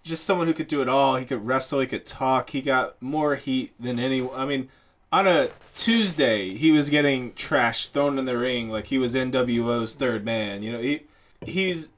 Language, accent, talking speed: English, American, 210 wpm